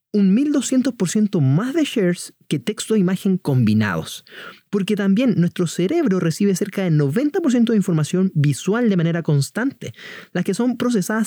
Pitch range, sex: 145-220 Hz, male